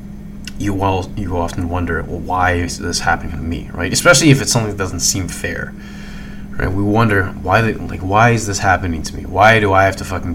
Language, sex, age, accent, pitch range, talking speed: English, male, 20-39, American, 85-110 Hz, 215 wpm